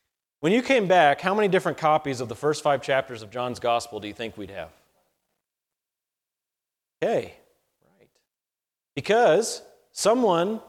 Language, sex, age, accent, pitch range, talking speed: English, male, 30-49, American, 140-195 Hz, 135 wpm